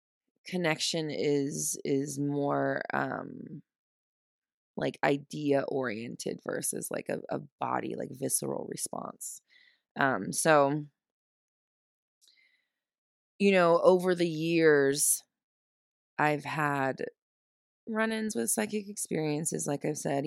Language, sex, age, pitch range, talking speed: English, female, 20-39, 145-180 Hz, 90 wpm